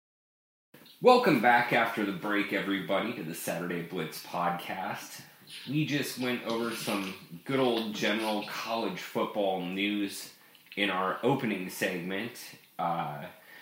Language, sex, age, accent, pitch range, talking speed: English, male, 30-49, American, 85-110 Hz, 120 wpm